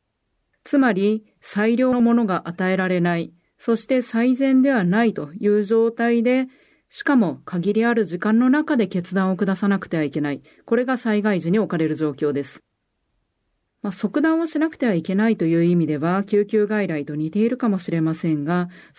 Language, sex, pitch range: Japanese, female, 175-235 Hz